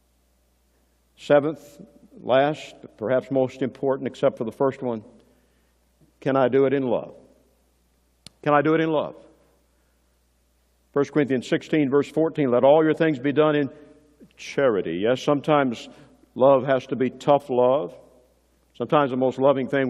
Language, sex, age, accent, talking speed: English, male, 50-69, American, 145 wpm